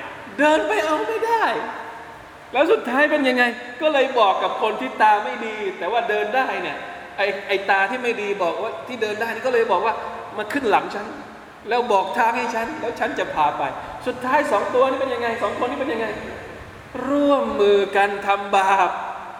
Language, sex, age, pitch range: Thai, male, 20-39, 160-245 Hz